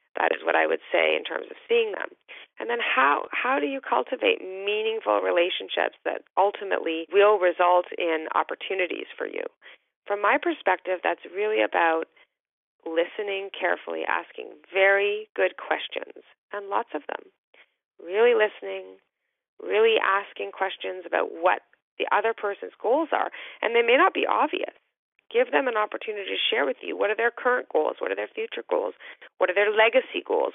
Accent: American